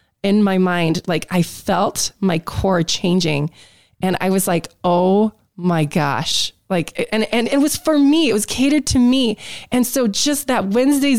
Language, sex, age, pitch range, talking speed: English, female, 20-39, 190-245 Hz, 180 wpm